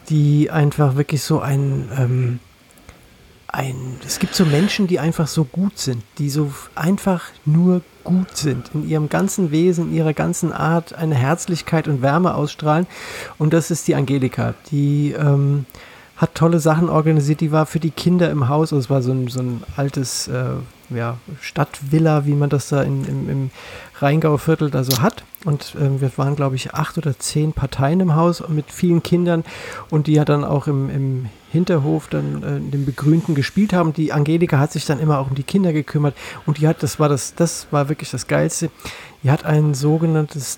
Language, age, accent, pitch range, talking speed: German, 40-59, German, 140-165 Hz, 190 wpm